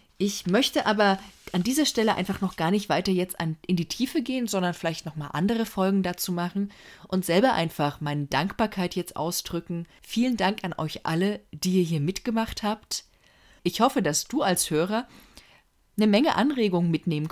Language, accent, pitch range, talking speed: German, German, 155-200 Hz, 180 wpm